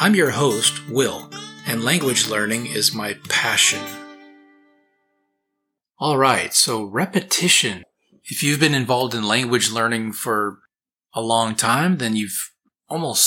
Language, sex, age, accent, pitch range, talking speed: English, male, 30-49, American, 105-125 Hz, 125 wpm